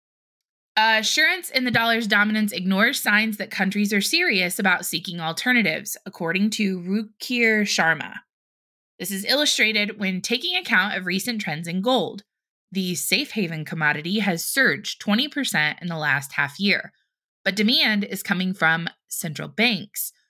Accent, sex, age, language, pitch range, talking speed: American, female, 20-39, English, 175-230 Hz, 140 wpm